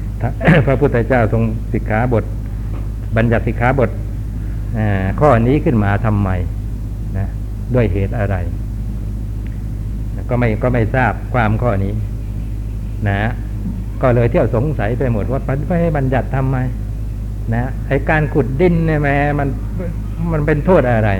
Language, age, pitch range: Thai, 60-79, 105-125 Hz